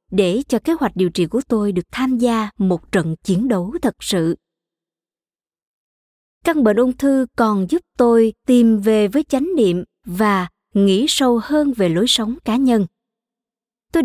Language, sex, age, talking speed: Vietnamese, male, 20-39, 165 wpm